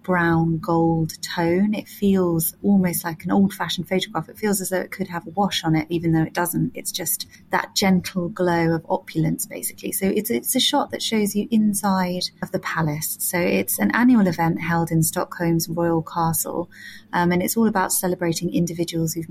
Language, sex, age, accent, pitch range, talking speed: English, female, 30-49, British, 170-200 Hz, 195 wpm